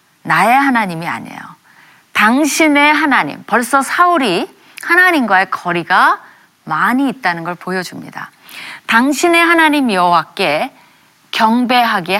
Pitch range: 180-280 Hz